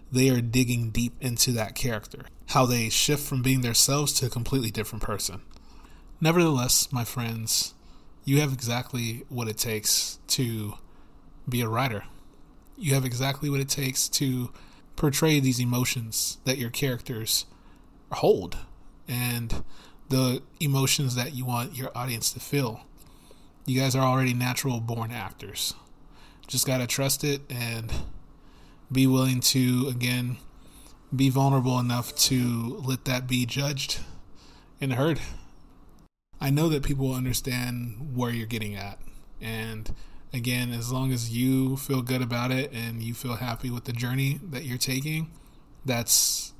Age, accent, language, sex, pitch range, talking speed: 20-39, American, English, male, 115-135 Hz, 145 wpm